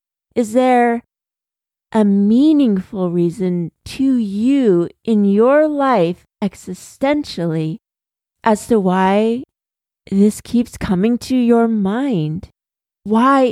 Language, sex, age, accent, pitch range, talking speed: English, female, 40-59, American, 195-255 Hz, 95 wpm